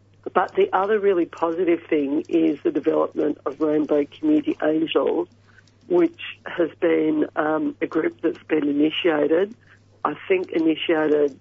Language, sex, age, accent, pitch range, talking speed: English, female, 50-69, Australian, 145-170 Hz, 130 wpm